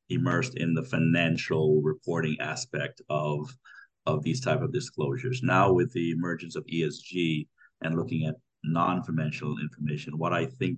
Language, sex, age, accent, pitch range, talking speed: English, male, 50-69, American, 85-115 Hz, 150 wpm